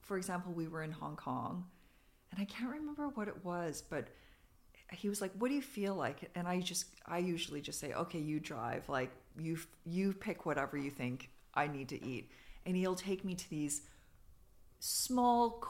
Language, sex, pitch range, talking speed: English, female, 155-195 Hz, 195 wpm